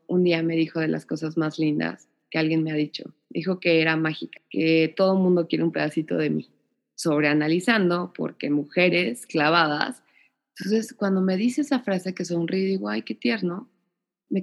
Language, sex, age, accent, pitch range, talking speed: Spanish, female, 20-39, Mexican, 165-235 Hz, 180 wpm